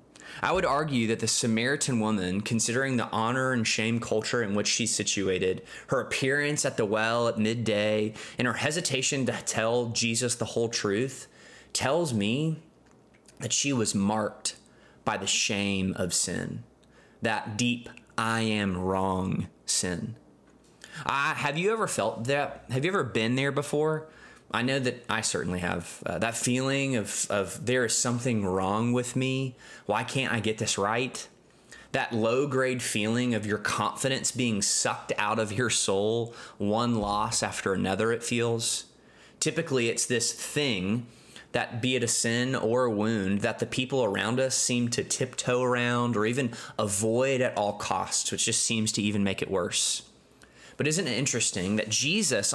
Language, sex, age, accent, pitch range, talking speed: English, male, 20-39, American, 110-130 Hz, 165 wpm